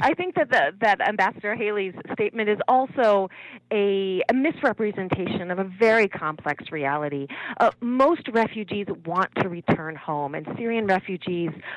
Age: 30-49